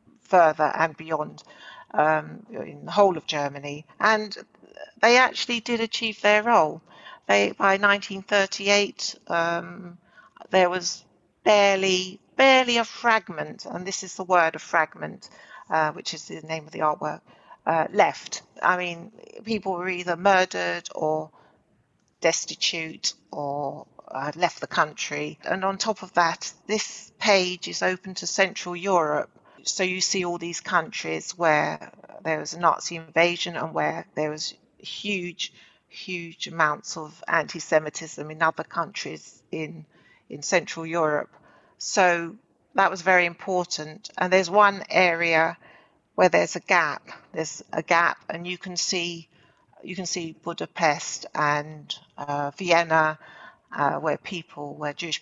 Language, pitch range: English, 160-195 Hz